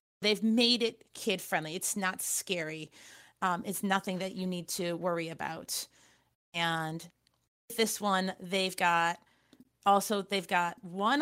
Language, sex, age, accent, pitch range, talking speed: English, female, 30-49, American, 180-210 Hz, 135 wpm